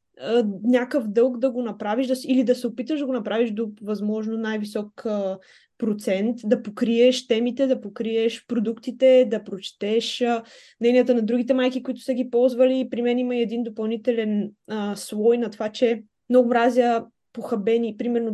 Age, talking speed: 20-39, 145 wpm